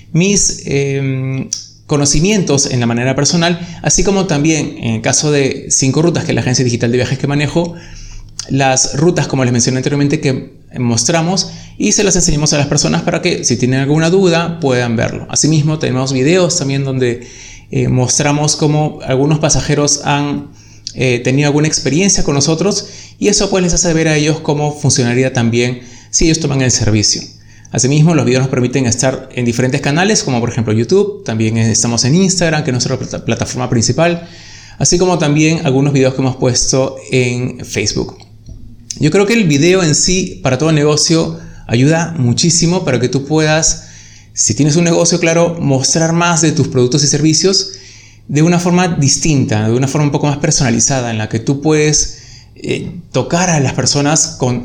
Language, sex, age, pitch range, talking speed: Spanish, male, 20-39, 125-160 Hz, 180 wpm